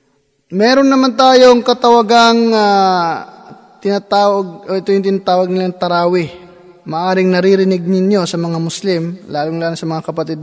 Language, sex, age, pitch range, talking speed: Filipino, male, 20-39, 155-190 Hz, 120 wpm